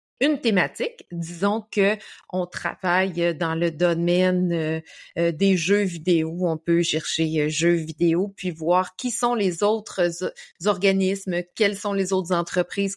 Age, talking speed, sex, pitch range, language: 30-49, 135 wpm, female, 175-220 Hz, French